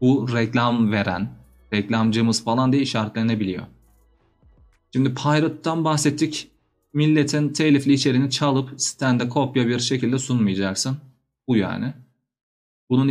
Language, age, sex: Turkish, 30-49, male